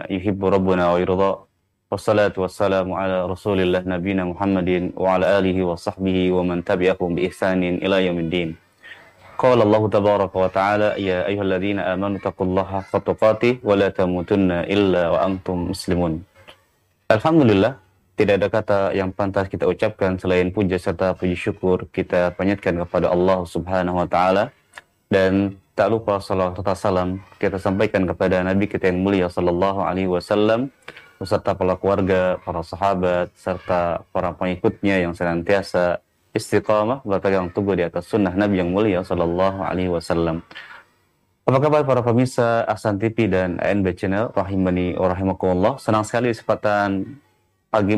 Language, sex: Indonesian, male